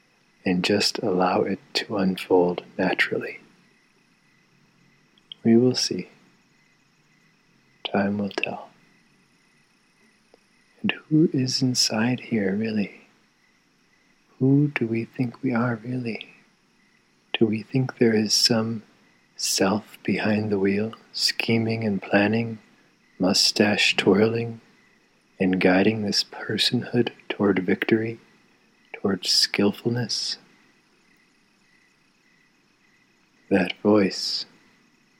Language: English